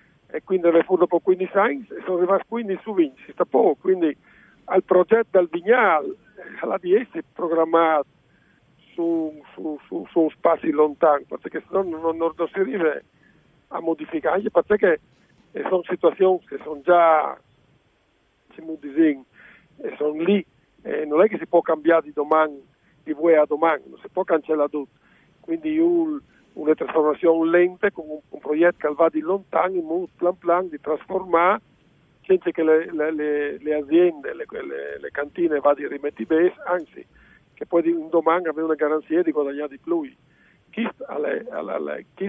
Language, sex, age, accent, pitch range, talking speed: Italian, male, 50-69, native, 155-195 Hz, 160 wpm